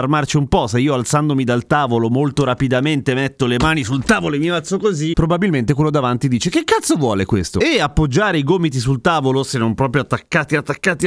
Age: 30-49